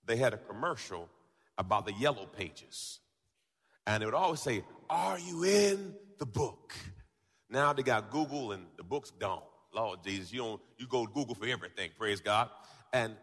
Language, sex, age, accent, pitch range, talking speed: English, male, 40-59, American, 130-200 Hz, 170 wpm